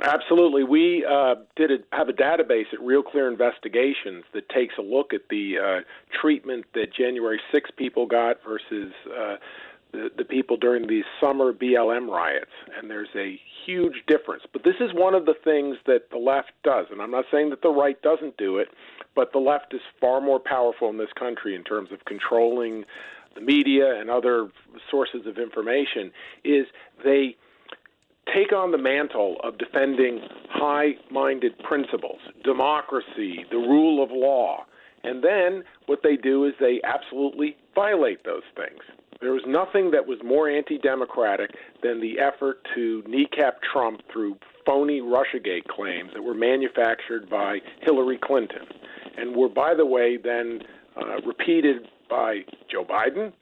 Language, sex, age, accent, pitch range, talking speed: English, male, 40-59, American, 125-180 Hz, 160 wpm